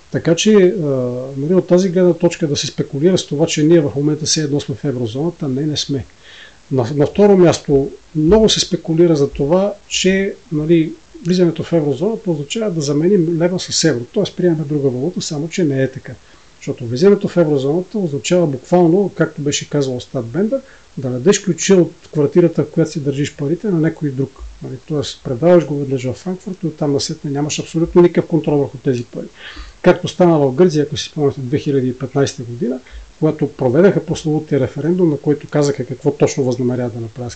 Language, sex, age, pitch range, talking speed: Bulgarian, male, 40-59, 140-175 Hz, 185 wpm